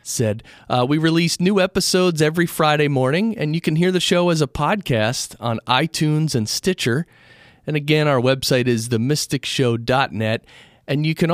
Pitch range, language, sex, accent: 120-155 Hz, English, male, American